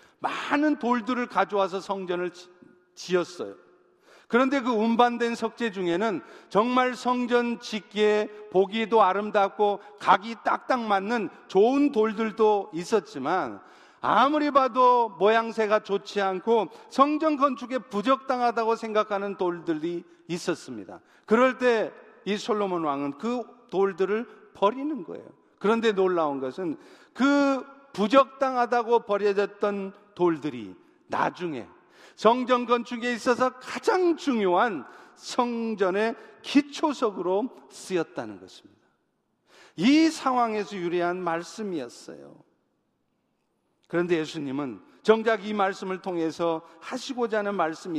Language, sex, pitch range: Korean, male, 190-245 Hz